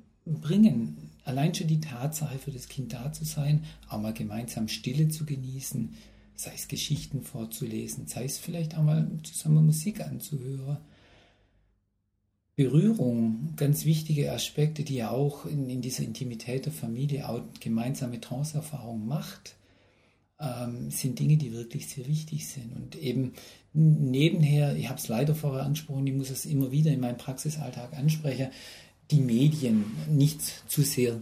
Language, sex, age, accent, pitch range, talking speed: German, male, 40-59, German, 115-150 Hz, 150 wpm